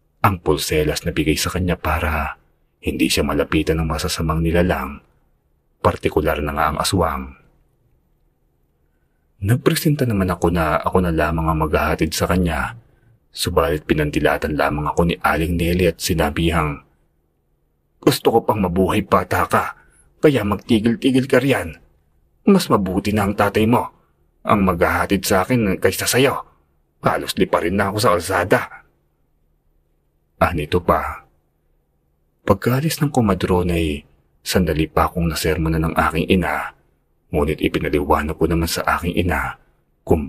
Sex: male